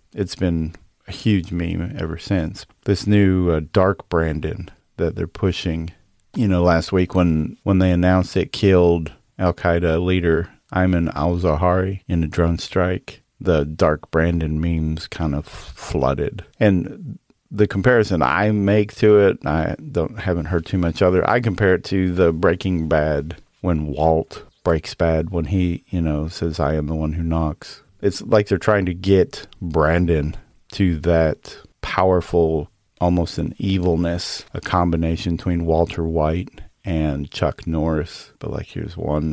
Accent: American